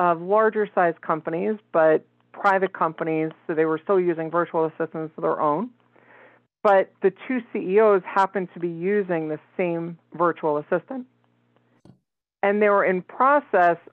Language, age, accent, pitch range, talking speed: English, 40-59, American, 165-200 Hz, 145 wpm